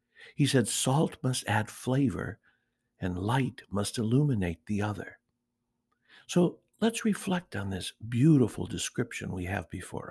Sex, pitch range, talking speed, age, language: male, 115-155 Hz, 130 wpm, 60-79, English